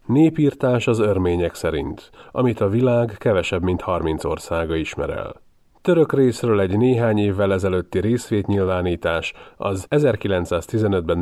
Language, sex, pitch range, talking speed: Hungarian, male, 90-115 Hz, 120 wpm